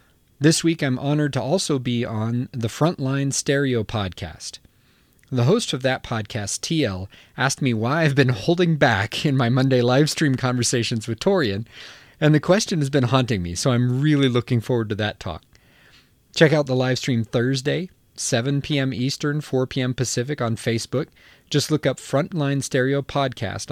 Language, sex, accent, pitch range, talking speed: English, male, American, 110-140 Hz, 170 wpm